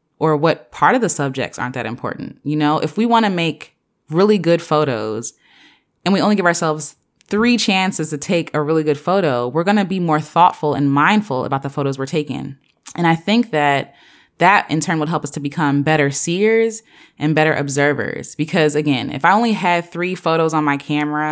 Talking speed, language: 205 wpm, English